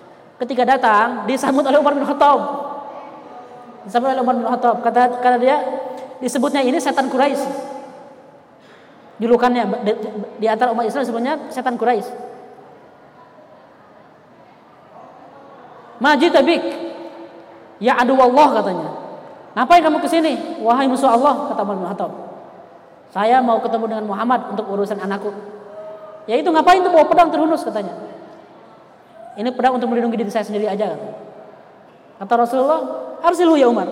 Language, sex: Indonesian, female